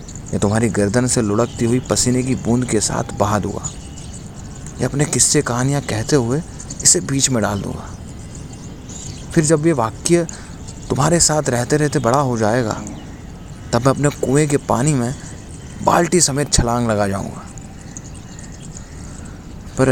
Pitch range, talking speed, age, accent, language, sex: 100-130 Hz, 145 wpm, 30-49, native, Hindi, male